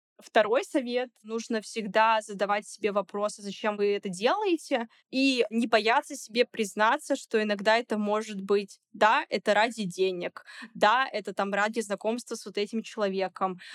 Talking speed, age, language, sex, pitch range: 150 wpm, 20-39, Russian, female, 205-245 Hz